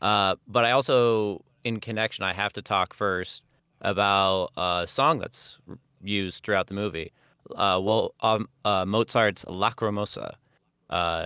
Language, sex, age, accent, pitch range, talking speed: English, male, 30-49, American, 90-110 Hz, 140 wpm